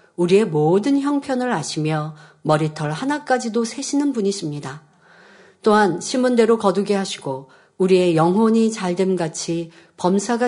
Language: Korean